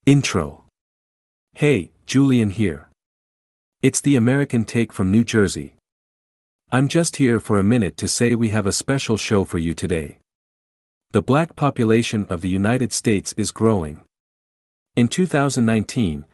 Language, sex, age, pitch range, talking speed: English, male, 50-69, 80-120 Hz, 140 wpm